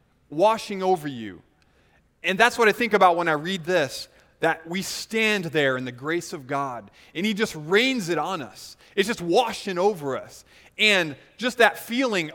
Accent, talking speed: American, 185 wpm